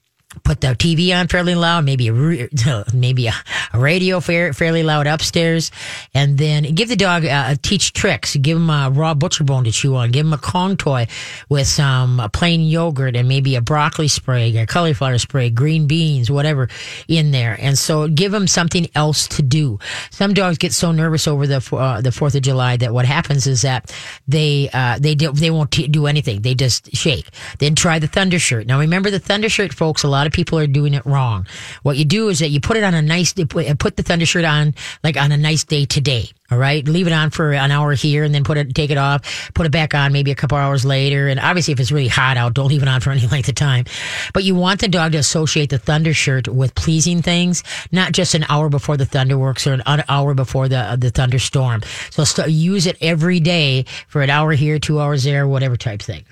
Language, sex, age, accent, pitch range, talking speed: English, female, 40-59, American, 130-160 Hz, 235 wpm